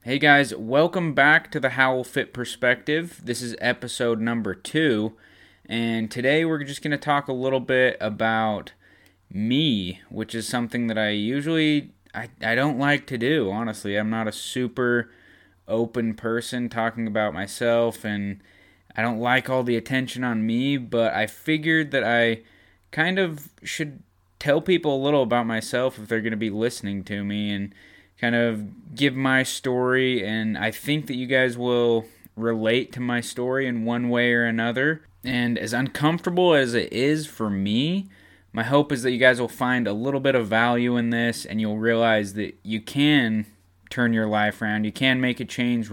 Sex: male